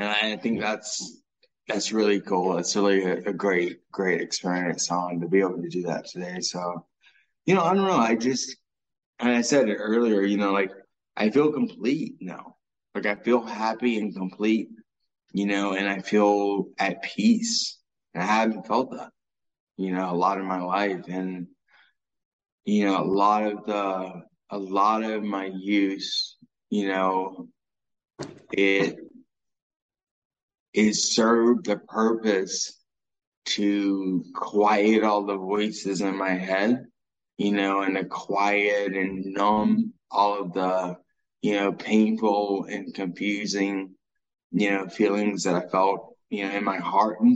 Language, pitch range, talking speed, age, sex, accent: English, 95-110 Hz, 150 wpm, 20-39, male, American